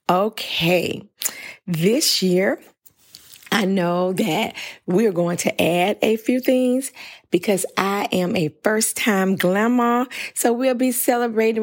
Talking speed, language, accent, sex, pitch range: 120 wpm, English, American, female, 160-210 Hz